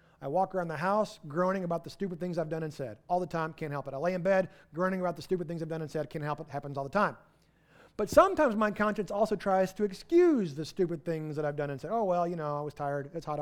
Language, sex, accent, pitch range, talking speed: English, male, American, 155-210 Hz, 290 wpm